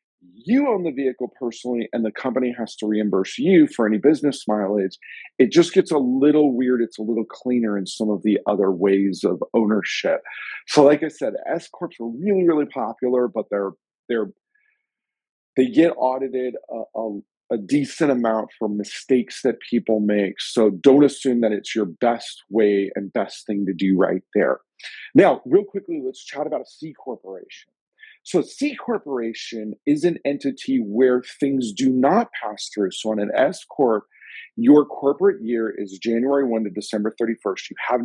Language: English